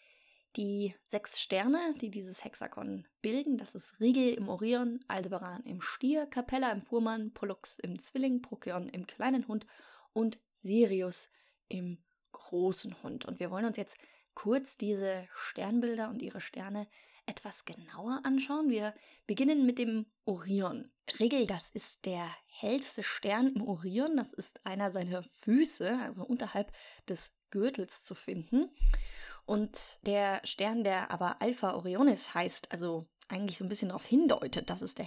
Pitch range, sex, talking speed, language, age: 195-255 Hz, female, 145 wpm, German, 20-39